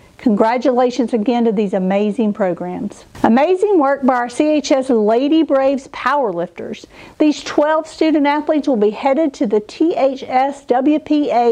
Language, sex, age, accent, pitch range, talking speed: English, female, 50-69, American, 215-290 Hz, 130 wpm